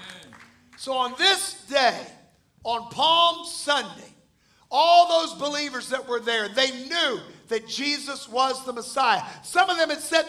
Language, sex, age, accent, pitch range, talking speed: English, male, 50-69, American, 230-300 Hz, 145 wpm